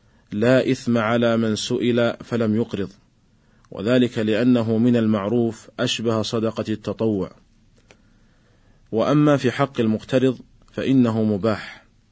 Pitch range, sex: 110-125 Hz, male